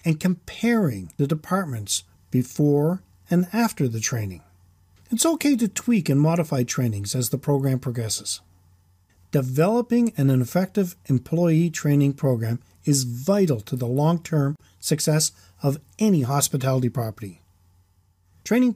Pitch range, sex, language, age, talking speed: 115-165 Hz, male, English, 50-69, 120 wpm